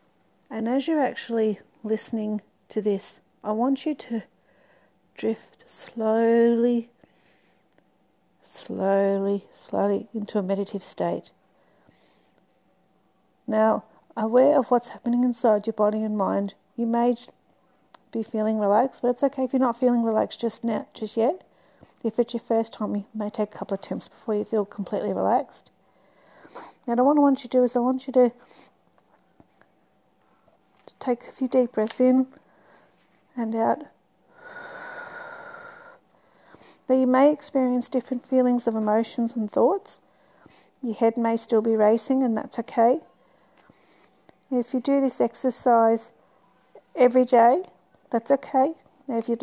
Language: English